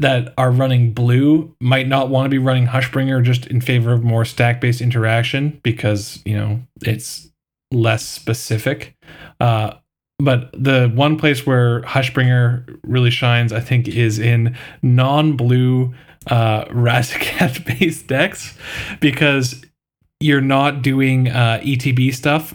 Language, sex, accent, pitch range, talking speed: English, male, American, 115-135 Hz, 130 wpm